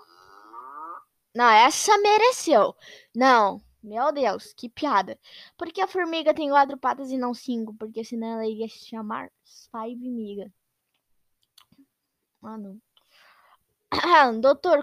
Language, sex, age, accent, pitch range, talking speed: Portuguese, female, 10-29, Brazilian, 215-270 Hz, 110 wpm